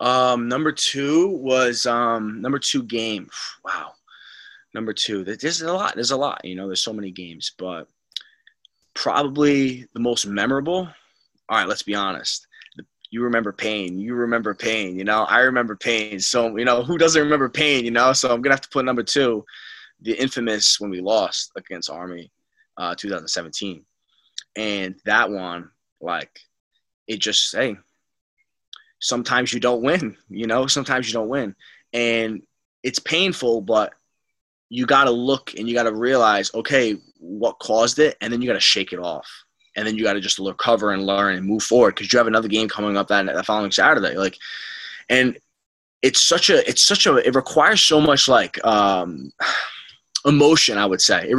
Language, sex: English, male